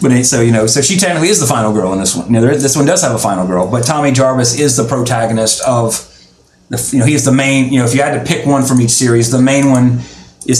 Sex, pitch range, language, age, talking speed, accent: male, 115-140 Hz, English, 30-49, 305 wpm, American